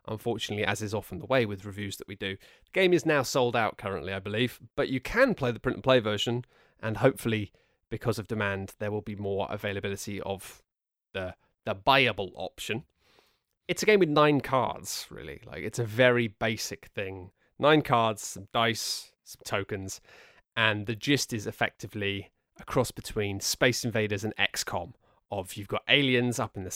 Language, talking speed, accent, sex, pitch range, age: English, 185 wpm, British, male, 100-130 Hz, 30-49